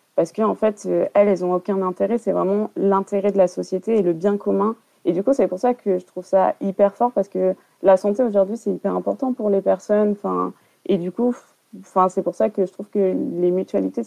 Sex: female